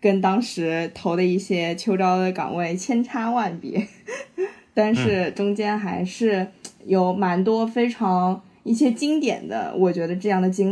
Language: Chinese